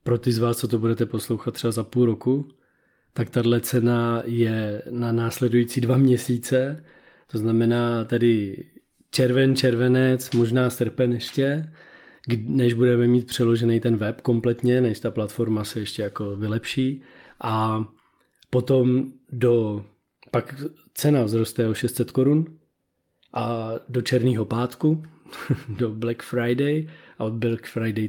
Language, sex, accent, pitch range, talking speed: Czech, male, native, 110-130 Hz, 130 wpm